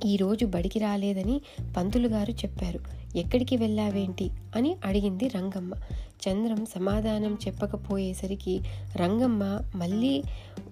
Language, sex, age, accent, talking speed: Telugu, female, 30-49, native, 95 wpm